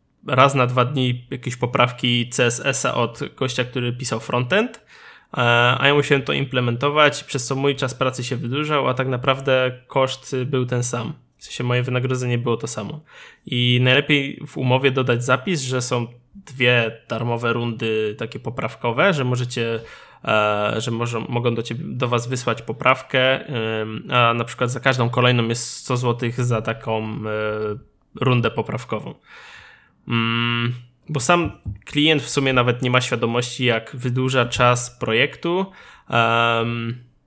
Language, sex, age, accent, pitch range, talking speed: Polish, male, 20-39, native, 115-130 Hz, 145 wpm